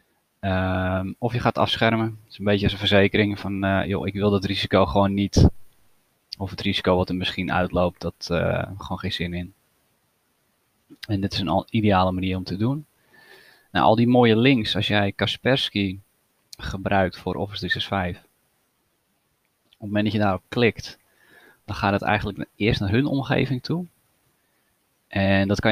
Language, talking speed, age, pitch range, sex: Dutch, 175 wpm, 20-39, 95-110 Hz, male